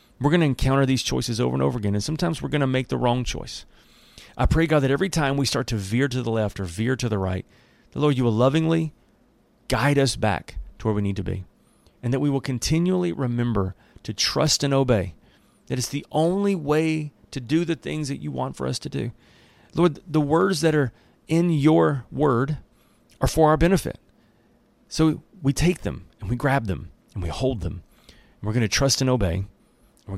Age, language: 40-59, English